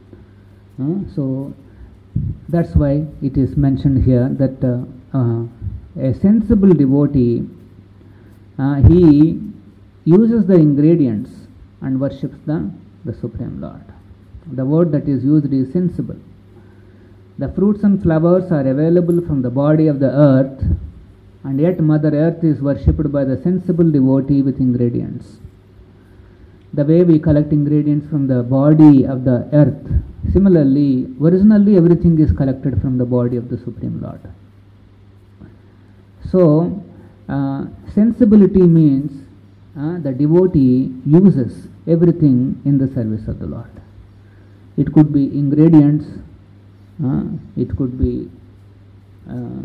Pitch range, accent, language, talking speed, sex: 100-150 Hz, Indian, English, 125 wpm, male